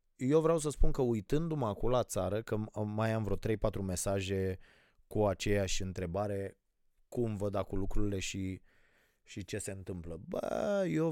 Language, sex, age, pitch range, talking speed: Romanian, male, 20-39, 90-115 Hz, 160 wpm